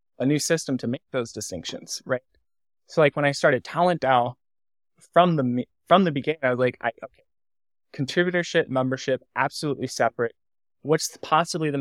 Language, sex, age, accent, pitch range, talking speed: English, male, 20-39, American, 130-160 Hz, 165 wpm